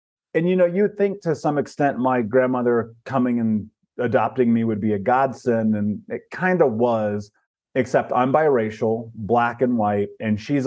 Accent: American